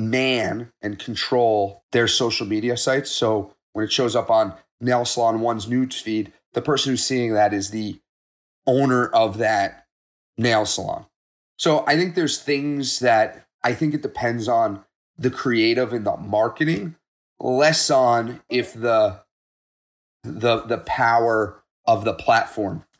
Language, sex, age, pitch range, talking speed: English, male, 30-49, 105-125 Hz, 145 wpm